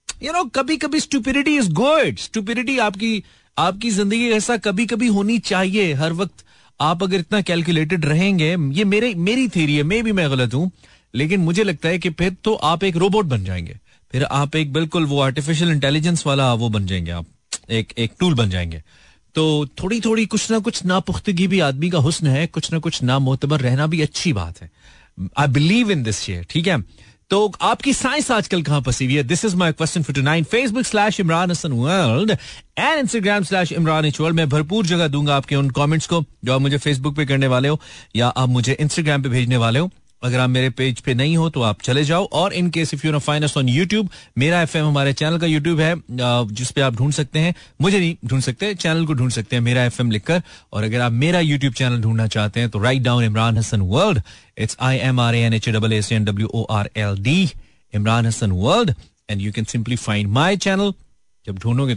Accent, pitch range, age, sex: native, 125-185 Hz, 40-59, male